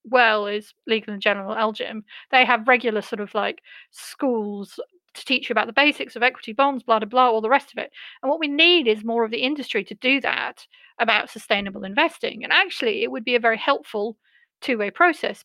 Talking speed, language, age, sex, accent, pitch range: 220 wpm, English, 40-59, female, British, 220-285 Hz